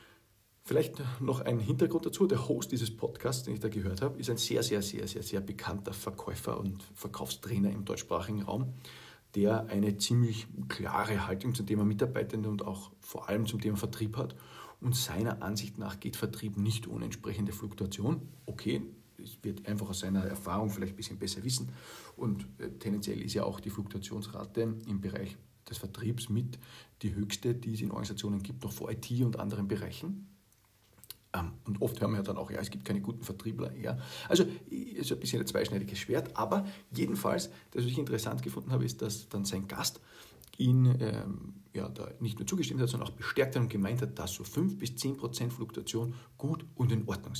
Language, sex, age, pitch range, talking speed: German, male, 50-69, 100-125 Hz, 190 wpm